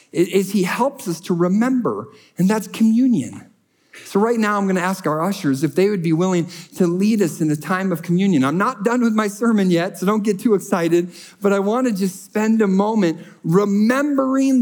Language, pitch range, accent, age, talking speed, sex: English, 165-210 Hz, American, 40-59, 205 wpm, male